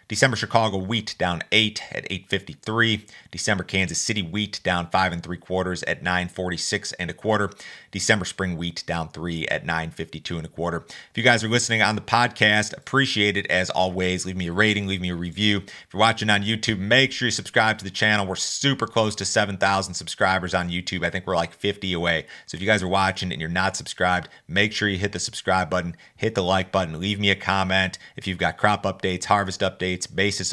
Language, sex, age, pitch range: English, male, 40-59, 90-105 Hz